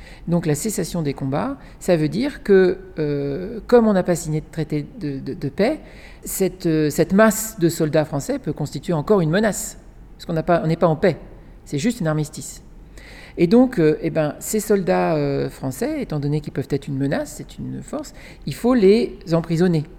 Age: 50-69